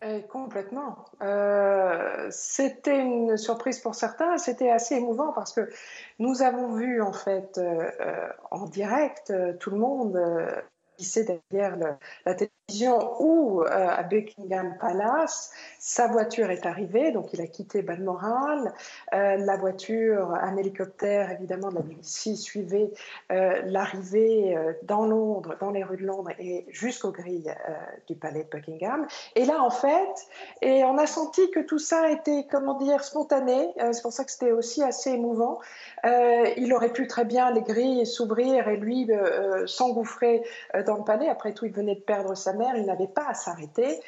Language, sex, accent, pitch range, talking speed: French, female, French, 200-255 Hz, 175 wpm